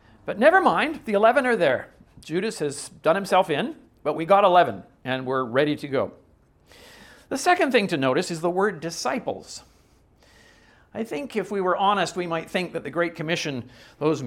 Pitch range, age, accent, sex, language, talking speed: 125-185 Hz, 50-69, American, male, English, 185 wpm